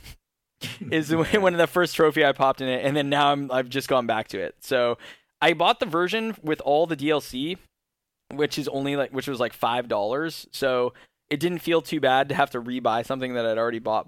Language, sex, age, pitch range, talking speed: English, male, 10-29, 125-165 Hz, 220 wpm